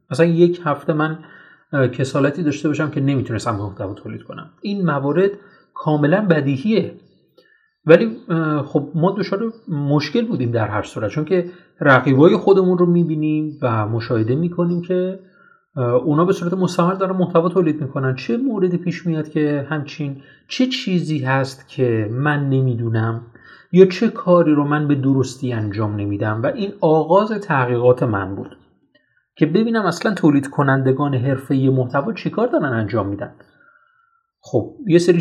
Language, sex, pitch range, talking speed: Persian, male, 125-180 Hz, 140 wpm